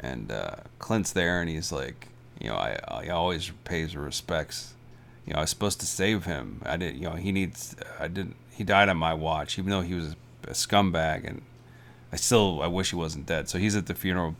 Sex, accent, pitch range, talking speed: male, American, 95-120 Hz, 225 wpm